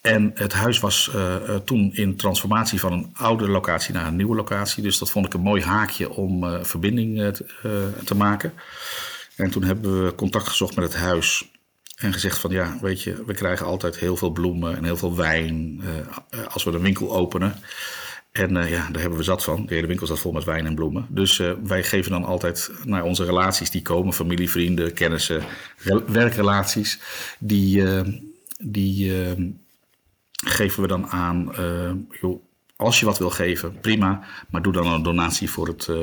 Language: Dutch